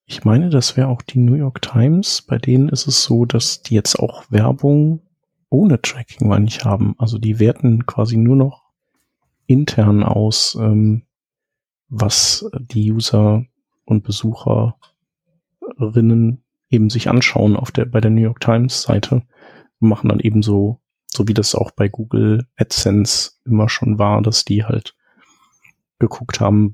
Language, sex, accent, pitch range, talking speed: German, male, German, 110-125 Hz, 155 wpm